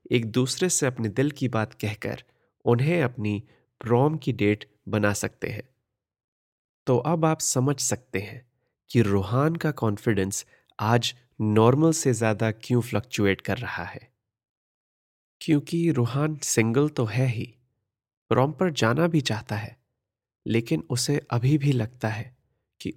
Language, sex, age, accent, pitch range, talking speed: Hindi, male, 30-49, native, 110-130 Hz, 140 wpm